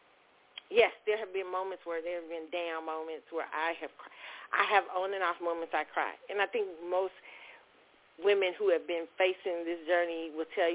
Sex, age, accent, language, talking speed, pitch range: female, 40-59, American, English, 200 wpm, 165-205 Hz